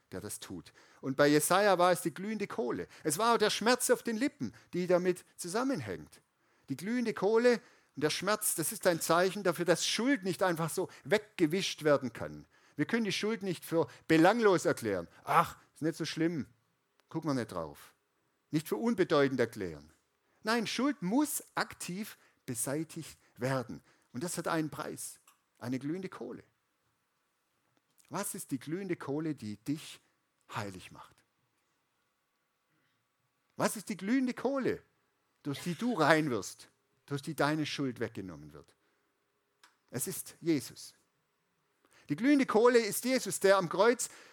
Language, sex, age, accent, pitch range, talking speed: German, male, 50-69, German, 140-210 Hz, 150 wpm